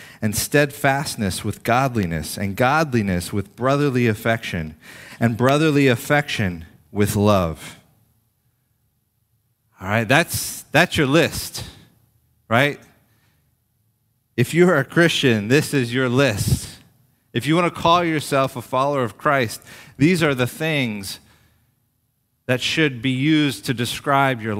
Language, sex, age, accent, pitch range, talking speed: English, male, 30-49, American, 110-135 Hz, 125 wpm